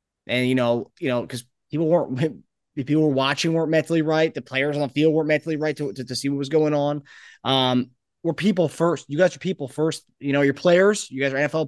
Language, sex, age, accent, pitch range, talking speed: English, male, 20-39, American, 125-155 Hz, 245 wpm